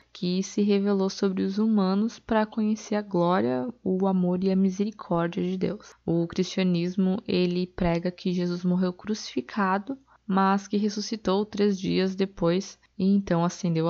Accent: Brazilian